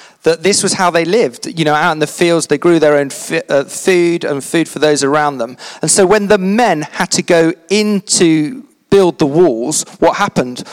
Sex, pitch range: male, 150-195 Hz